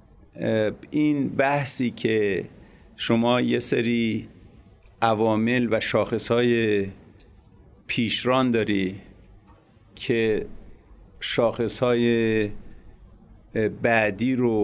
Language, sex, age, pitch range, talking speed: Persian, male, 50-69, 105-120 Hz, 60 wpm